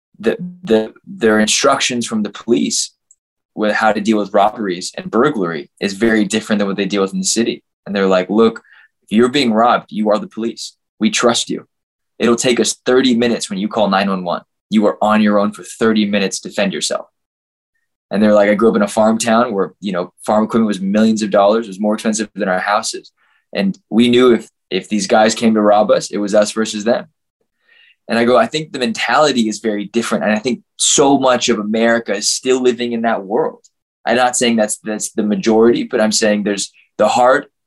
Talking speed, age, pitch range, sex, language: 220 wpm, 20-39, 105-120 Hz, male, English